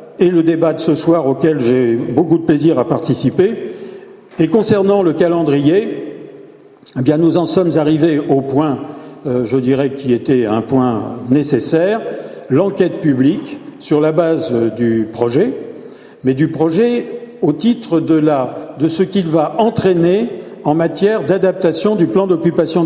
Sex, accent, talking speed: male, French, 145 wpm